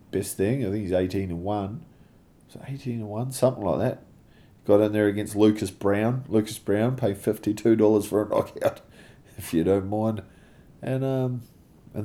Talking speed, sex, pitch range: 175 wpm, male, 85-115 Hz